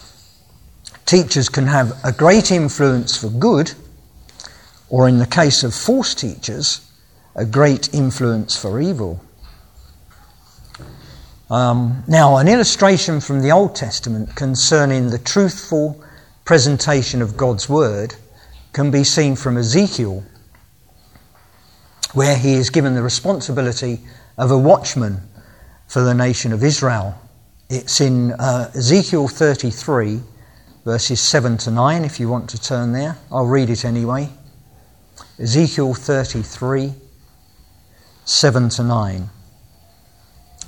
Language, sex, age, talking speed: English, male, 50-69, 115 wpm